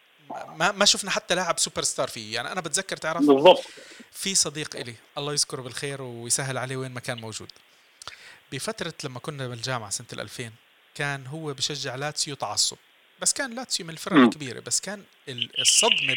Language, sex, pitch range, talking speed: Arabic, male, 130-165 Hz, 165 wpm